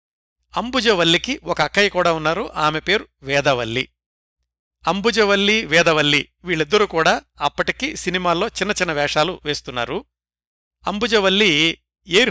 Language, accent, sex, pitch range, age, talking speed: Telugu, native, male, 115-175 Hz, 60-79, 95 wpm